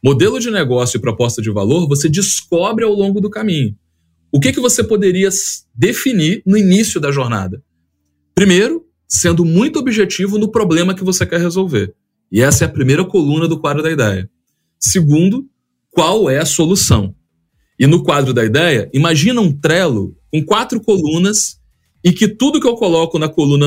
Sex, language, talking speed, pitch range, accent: male, Portuguese, 170 wpm, 130-195 Hz, Brazilian